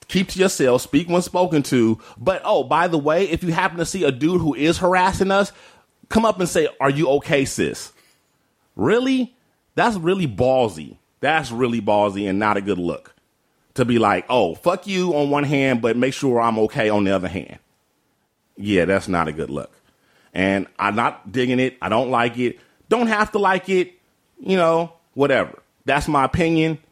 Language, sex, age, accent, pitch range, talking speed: English, male, 30-49, American, 120-160 Hz, 195 wpm